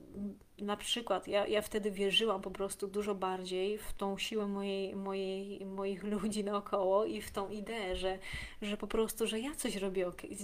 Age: 20-39